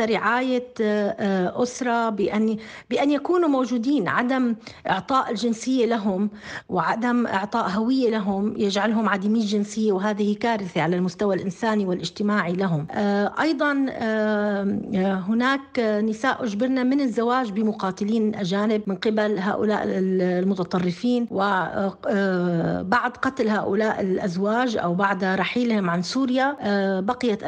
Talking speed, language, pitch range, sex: 100 wpm, Arabic, 200-245 Hz, female